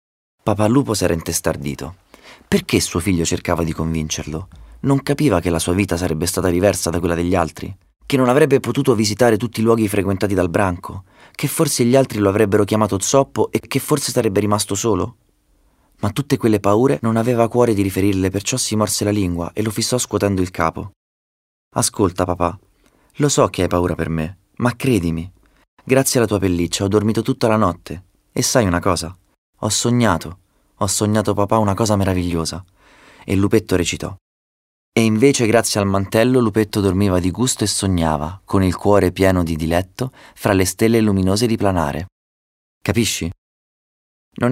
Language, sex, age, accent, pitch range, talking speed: Italian, male, 30-49, native, 85-110 Hz, 175 wpm